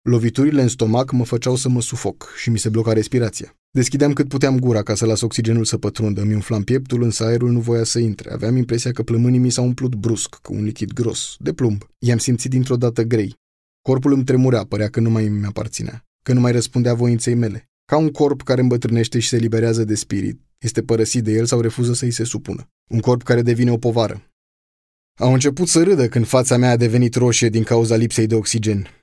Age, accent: 20-39, native